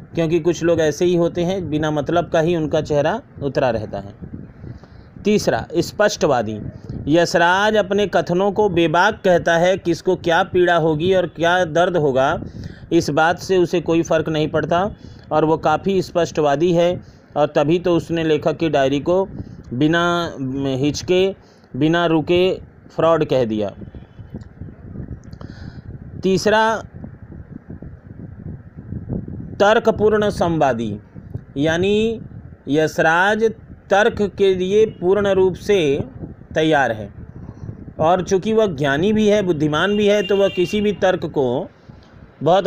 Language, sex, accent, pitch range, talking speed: Hindi, male, native, 155-195 Hz, 125 wpm